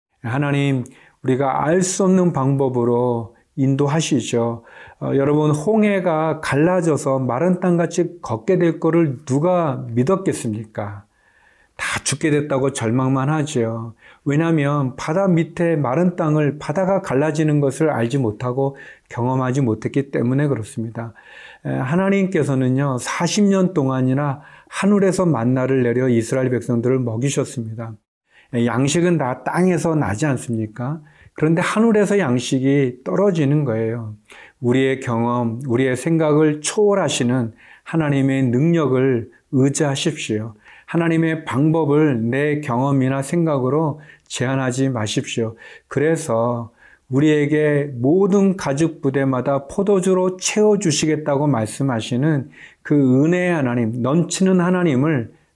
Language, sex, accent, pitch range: Korean, male, native, 125-165 Hz